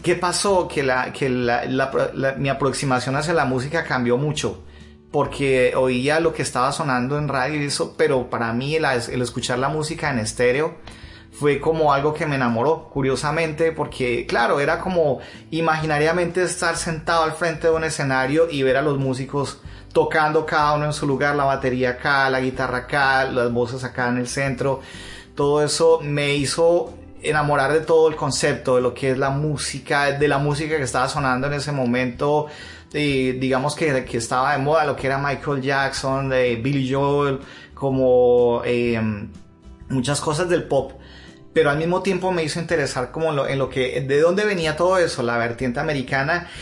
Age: 30-49